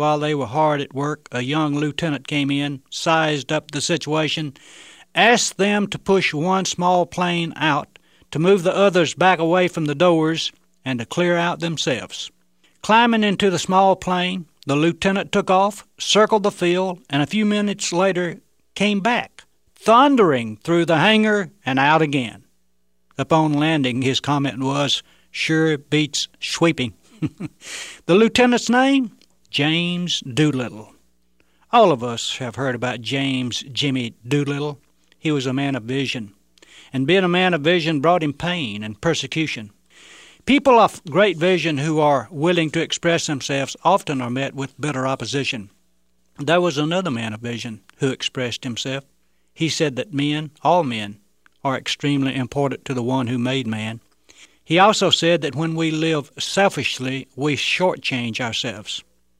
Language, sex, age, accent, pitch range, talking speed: English, male, 60-79, American, 130-175 Hz, 155 wpm